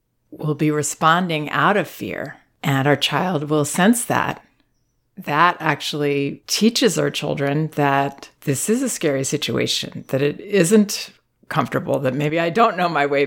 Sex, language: female, English